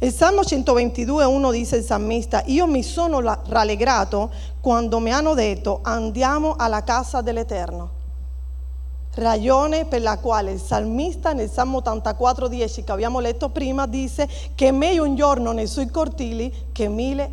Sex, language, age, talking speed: female, Italian, 40-59, 145 wpm